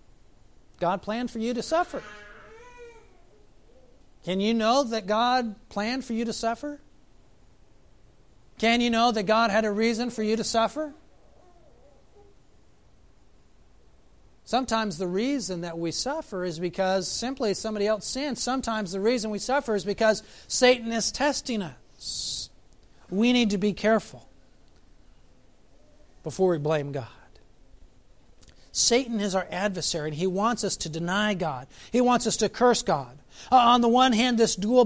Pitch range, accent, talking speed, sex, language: 185-235 Hz, American, 145 wpm, male, English